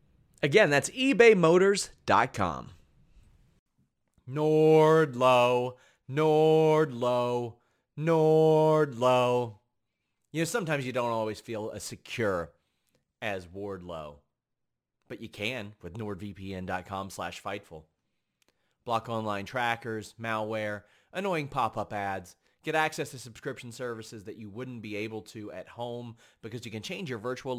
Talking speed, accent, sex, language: 110 wpm, American, male, English